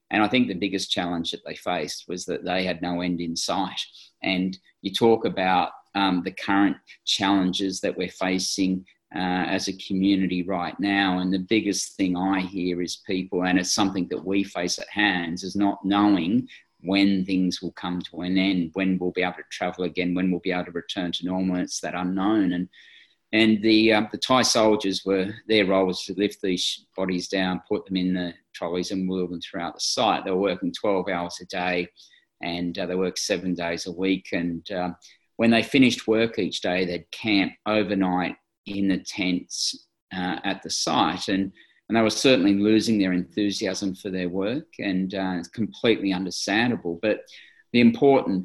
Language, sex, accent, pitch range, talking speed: English, male, Australian, 90-100 Hz, 195 wpm